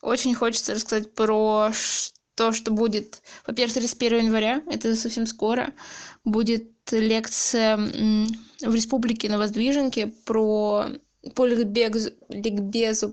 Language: Russian